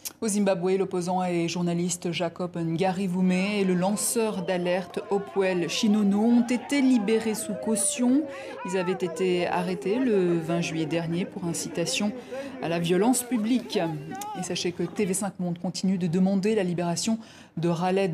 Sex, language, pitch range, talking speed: female, French, 180-220 Hz, 140 wpm